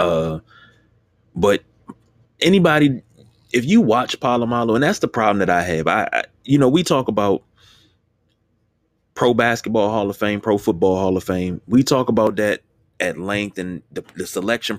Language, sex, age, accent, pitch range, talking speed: English, male, 30-49, American, 105-125 Hz, 170 wpm